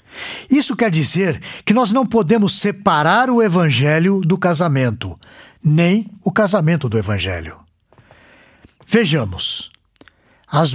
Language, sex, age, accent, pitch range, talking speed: Portuguese, male, 60-79, Brazilian, 125-200 Hz, 105 wpm